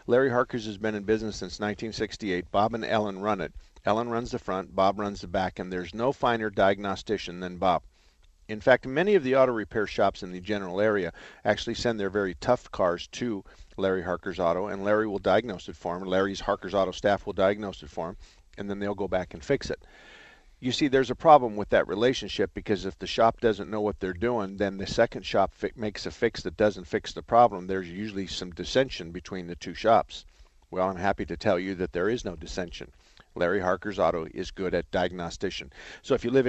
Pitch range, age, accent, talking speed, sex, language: 95-115 Hz, 50-69, American, 220 wpm, male, English